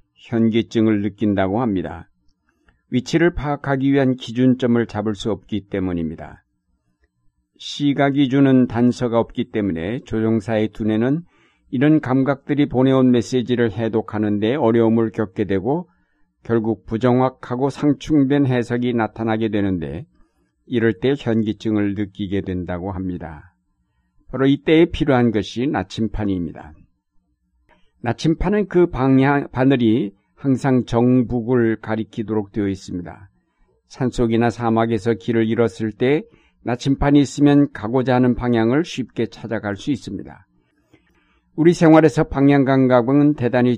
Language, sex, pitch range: Korean, male, 105-130 Hz